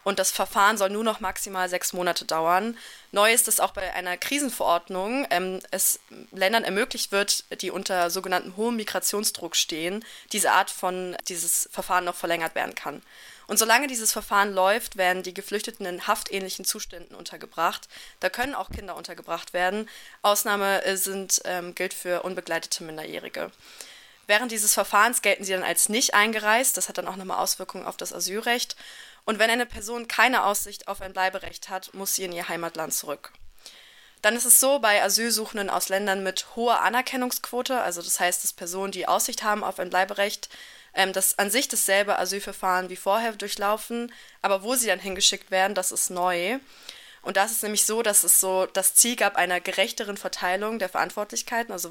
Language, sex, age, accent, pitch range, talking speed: German, female, 20-39, German, 185-220 Hz, 175 wpm